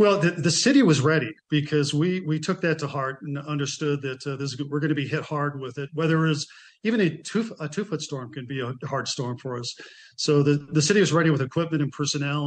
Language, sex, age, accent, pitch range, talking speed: English, male, 50-69, American, 135-155 Hz, 250 wpm